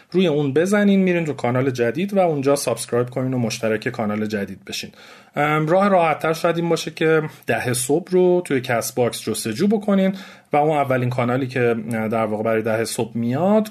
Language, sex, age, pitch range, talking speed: Persian, male, 30-49, 110-155 Hz, 180 wpm